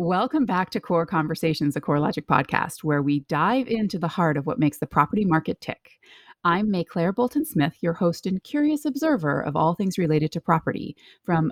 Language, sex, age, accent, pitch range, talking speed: English, female, 30-49, American, 150-225 Hz, 190 wpm